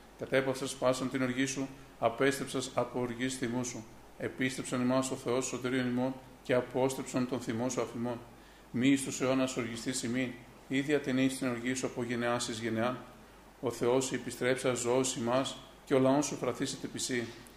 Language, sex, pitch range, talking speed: Greek, male, 120-130 Hz, 200 wpm